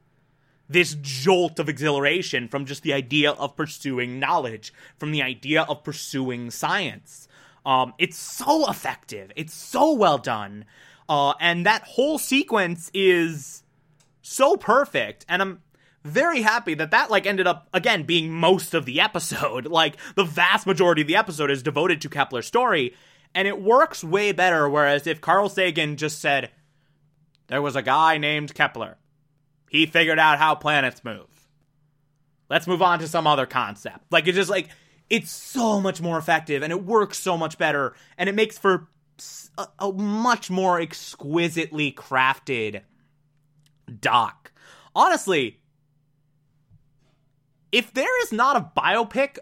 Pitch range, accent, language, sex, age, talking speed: 145-180 Hz, American, English, male, 20-39, 150 wpm